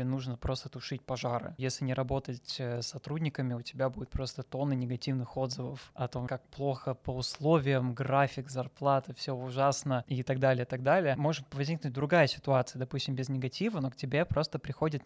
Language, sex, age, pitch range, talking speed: Russian, male, 20-39, 130-140 Hz, 175 wpm